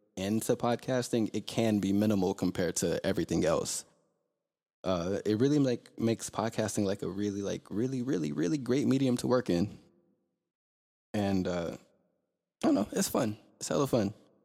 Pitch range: 100-125 Hz